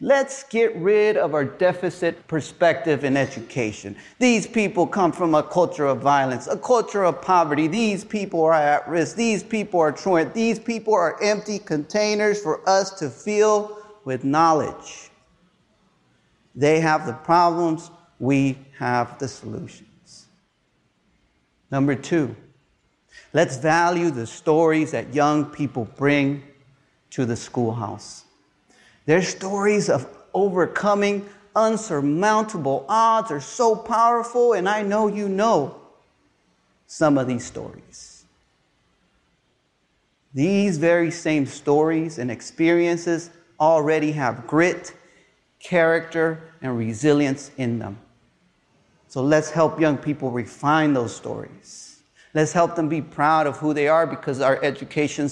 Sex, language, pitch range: male, English, 140-195 Hz